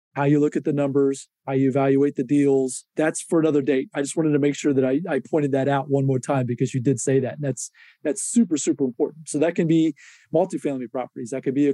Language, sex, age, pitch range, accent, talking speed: English, male, 30-49, 135-155 Hz, American, 260 wpm